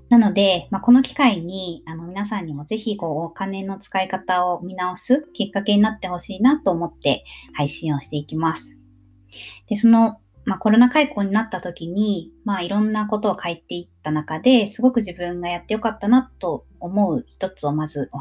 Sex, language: male, Japanese